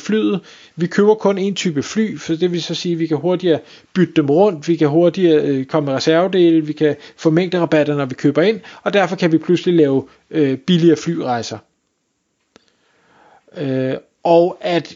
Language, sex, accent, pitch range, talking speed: Danish, male, native, 155-190 Hz, 185 wpm